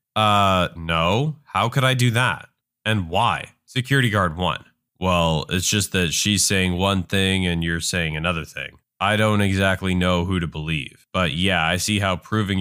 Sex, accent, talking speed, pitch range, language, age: male, American, 180 wpm, 95-155 Hz, English, 20-39